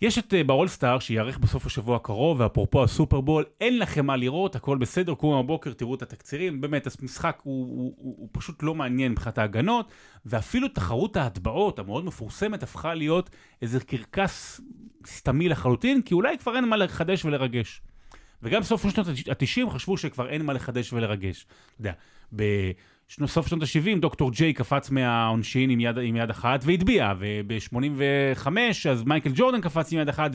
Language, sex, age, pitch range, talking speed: Hebrew, male, 30-49, 120-160 Hz, 165 wpm